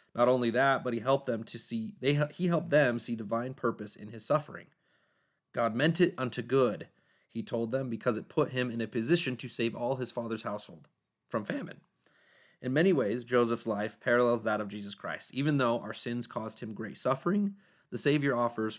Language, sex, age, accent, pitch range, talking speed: English, male, 30-49, American, 110-135 Hz, 200 wpm